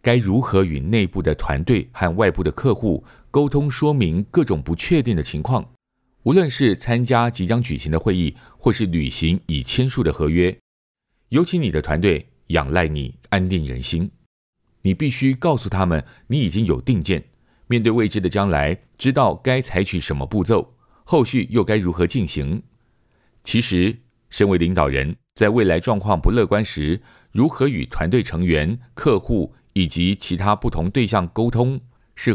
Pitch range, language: 85-120 Hz, Chinese